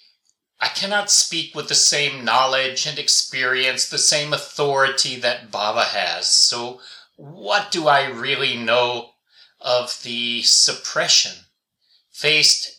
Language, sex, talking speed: English, male, 115 wpm